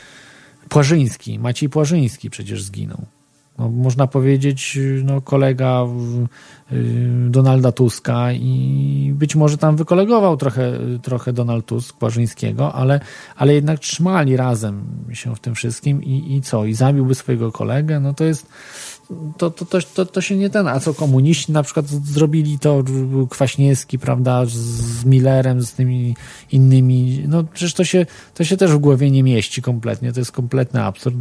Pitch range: 120-145 Hz